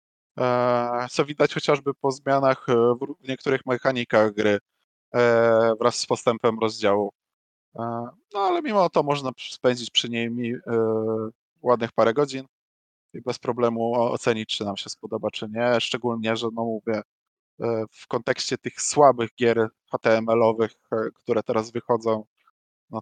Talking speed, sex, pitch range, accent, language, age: 130 wpm, male, 110-130 Hz, native, Polish, 20-39